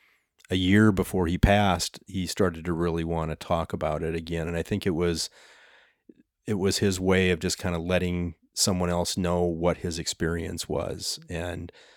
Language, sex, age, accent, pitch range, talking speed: Danish, male, 30-49, American, 85-95 Hz, 185 wpm